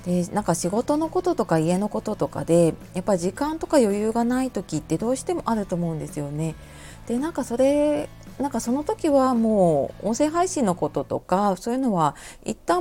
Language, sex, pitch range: Japanese, female, 165-255 Hz